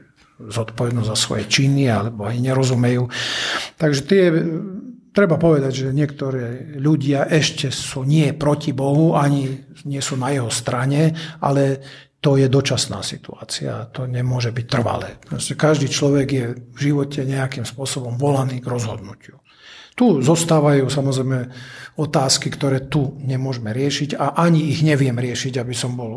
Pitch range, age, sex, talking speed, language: 125-155 Hz, 50-69, male, 135 wpm, Slovak